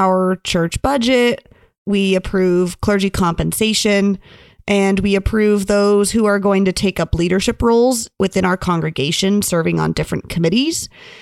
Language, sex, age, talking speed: English, female, 30-49, 140 wpm